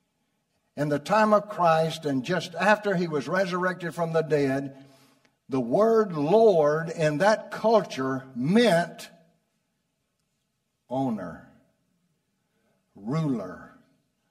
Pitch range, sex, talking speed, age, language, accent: 150-215 Hz, male, 95 wpm, 60-79, English, American